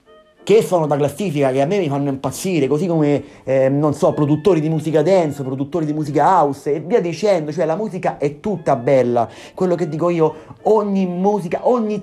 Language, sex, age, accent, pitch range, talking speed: Italian, male, 30-49, native, 140-175 Hz, 195 wpm